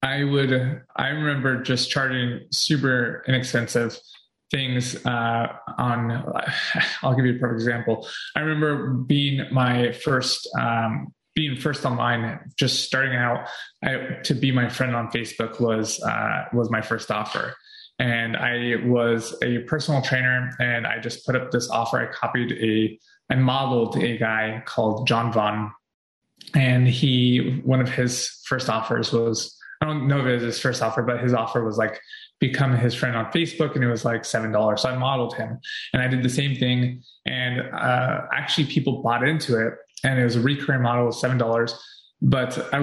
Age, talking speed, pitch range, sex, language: 20-39, 170 wpm, 115-135 Hz, male, English